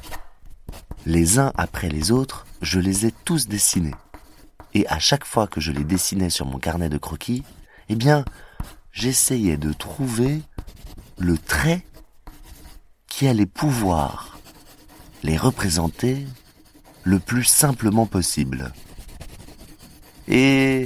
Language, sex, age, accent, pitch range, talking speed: French, male, 30-49, French, 80-120 Hz, 115 wpm